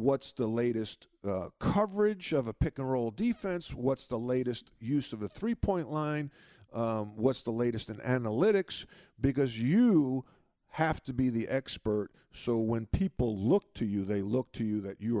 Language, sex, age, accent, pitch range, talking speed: English, male, 50-69, American, 100-135 Hz, 165 wpm